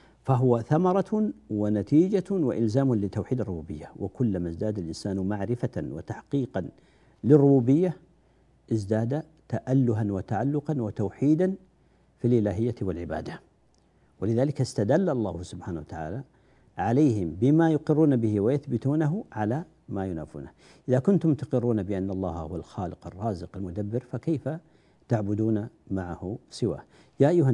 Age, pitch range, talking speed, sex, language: 50-69, 95-135 Hz, 100 wpm, male, Arabic